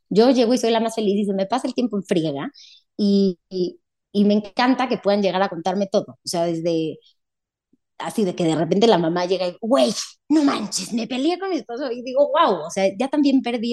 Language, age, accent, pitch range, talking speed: Spanish, 20-39, Spanish, 175-225 Hz, 235 wpm